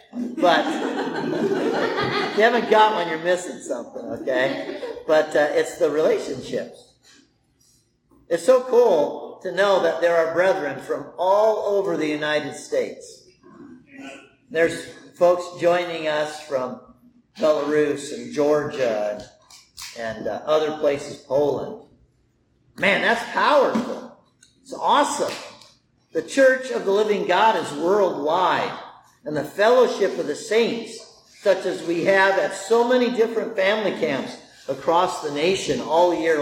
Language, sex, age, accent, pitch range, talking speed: English, male, 50-69, American, 160-230 Hz, 130 wpm